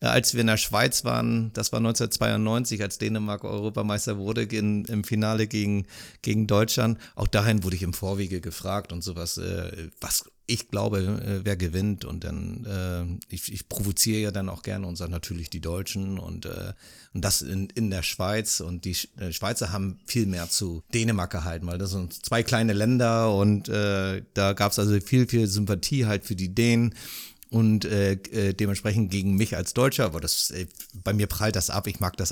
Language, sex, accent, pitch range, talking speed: German, male, German, 95-115 Hz, 195 wpm